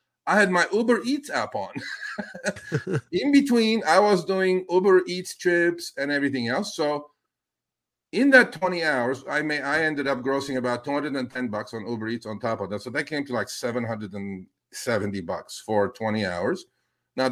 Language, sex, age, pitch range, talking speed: English, male, 50-69, 120-170 Hz, 175 wpm